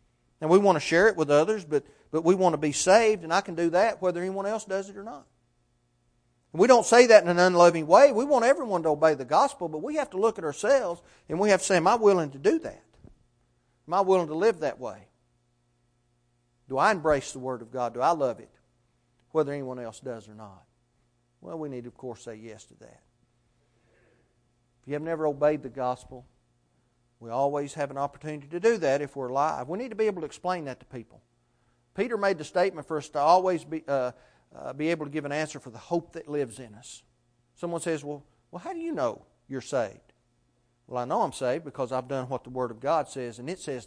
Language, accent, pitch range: English, American, 120-165 Hz